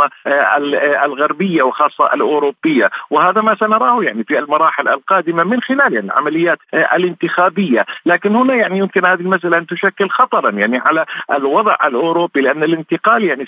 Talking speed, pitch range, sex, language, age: 140 wpm, 150-190 Hz, male, Arabic, 50-69